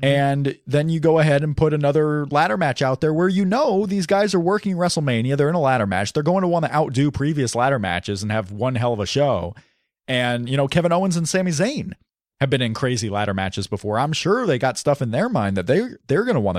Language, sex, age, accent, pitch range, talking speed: English, male, 30-49, American, 110-160 Hz, 250 wpm